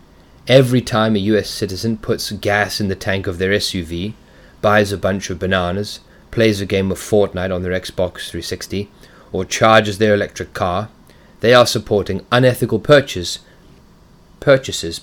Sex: male